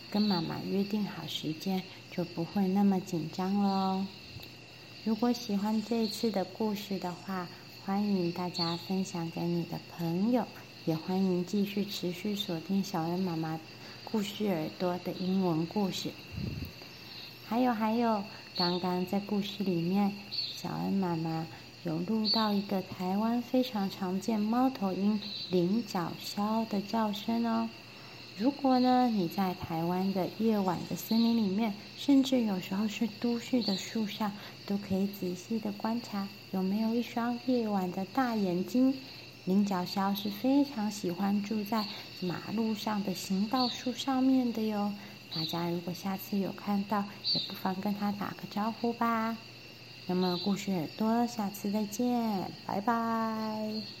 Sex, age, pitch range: female, 30-49, 180-220 Hz